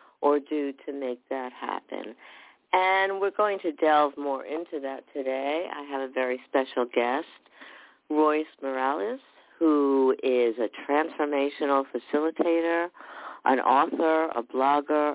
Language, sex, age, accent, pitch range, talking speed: English, female, 50-69, American, 130-155 Hz, 125 wpm